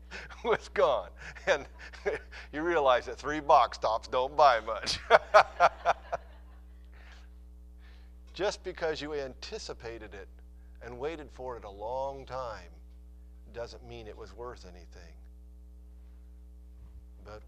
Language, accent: English, American